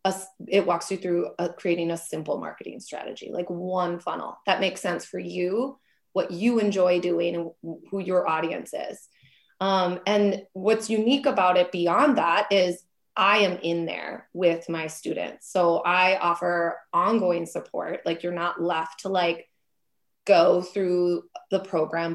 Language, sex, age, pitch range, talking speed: English, female, 20-39, 170-195 Hz, 155 wpm